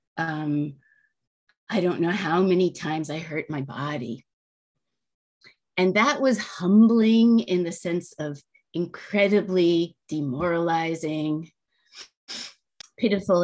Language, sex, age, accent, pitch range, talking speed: English, female, 30-49, American, 165-215 Hz, 100 wpm